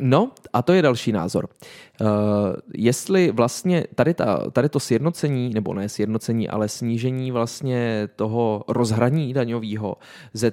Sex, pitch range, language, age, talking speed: male, 110-145 Hz, Czech, 20-39, 135 wpm